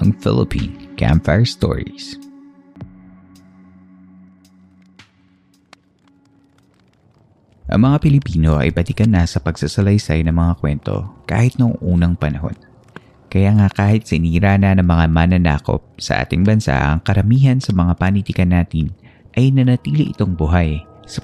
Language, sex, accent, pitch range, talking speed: Filipino, male, native, 85-115 Hz, 105 wpm